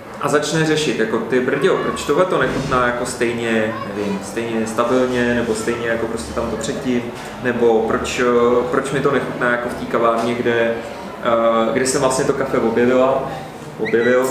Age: 30-49